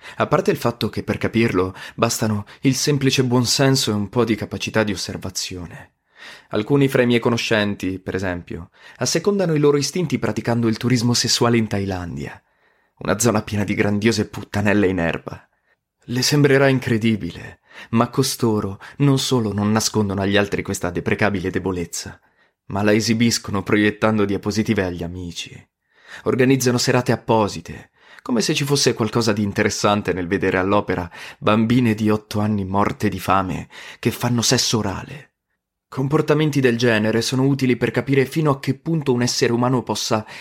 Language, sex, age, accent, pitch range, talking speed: Italian, male, 20-39, native, 100-125 Hz, 155 wpm